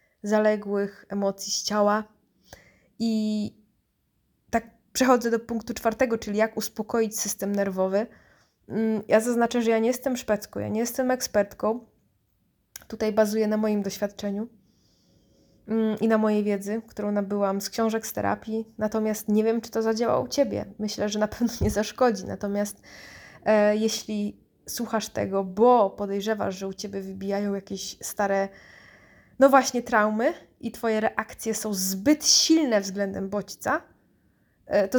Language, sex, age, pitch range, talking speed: Polish, female, 20-39, 205-230 Hz, 135 wpm